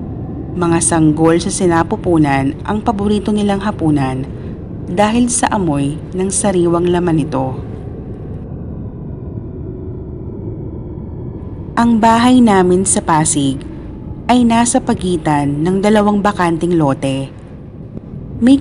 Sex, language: female, Filipino